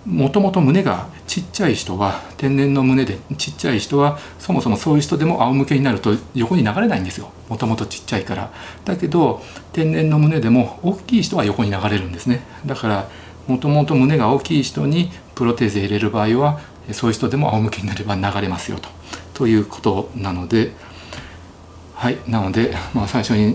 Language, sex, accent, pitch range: Japanese, male, native, 100-135 Hz